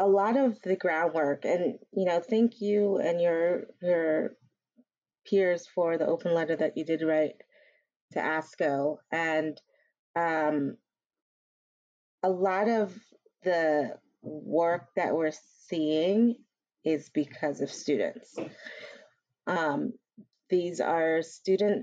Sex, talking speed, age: female, 115 wpm, 30-49